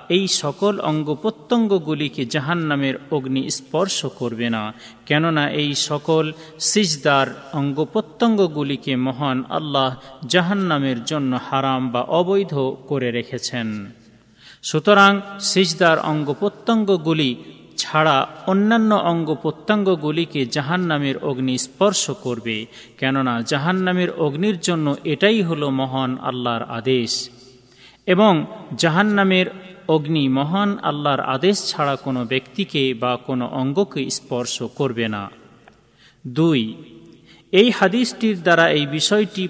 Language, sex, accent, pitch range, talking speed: Bengali, male, native, 130-180 Hz, 105 wpm